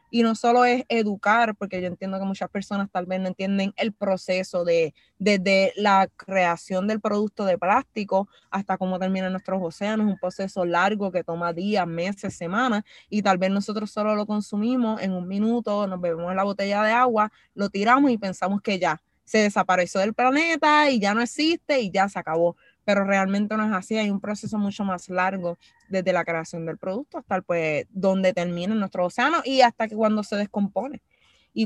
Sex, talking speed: female, 195 wpm